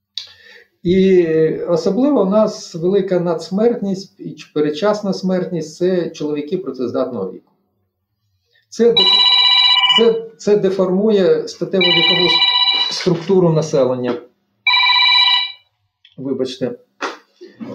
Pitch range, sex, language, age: 155-220 Hz, male, Ukrainian, 50-69